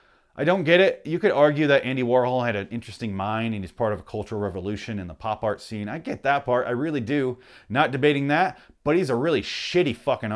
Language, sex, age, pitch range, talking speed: English, male, 30-49, 110-150 Hz, 245 wpm